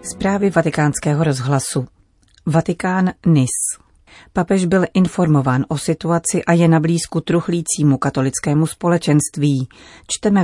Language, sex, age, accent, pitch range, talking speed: Czech, female, 40-59, native, 140-165 Hz, 105 wpm